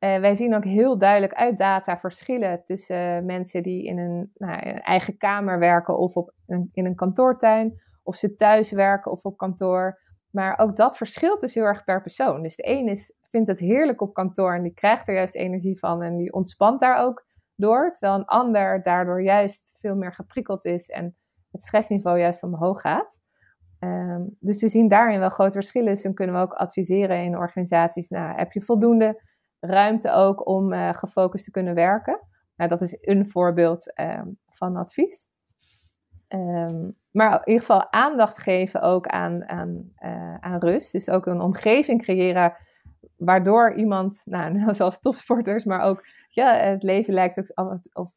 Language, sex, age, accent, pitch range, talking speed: English, female, 20-39, Dutch, 175-210 Hz, 180 wpm